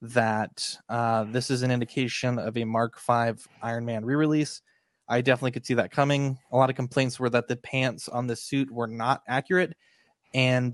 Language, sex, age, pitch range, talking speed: English, male, 20-39, 115-135 Hz, 190 wpm